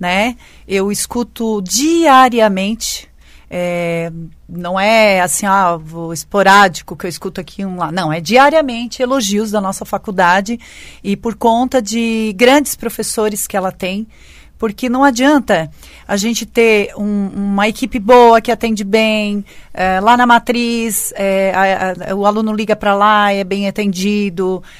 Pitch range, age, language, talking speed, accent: 190-230 Hz, 40-59, Portuguese, 150 wpm, Brazilian